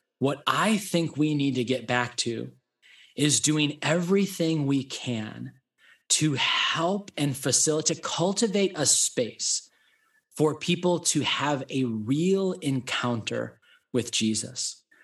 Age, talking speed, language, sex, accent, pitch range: 20-39, 125 wpm, English, male, American, 130-180 Hz